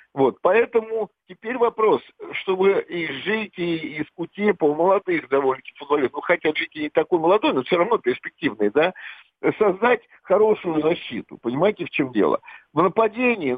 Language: Russian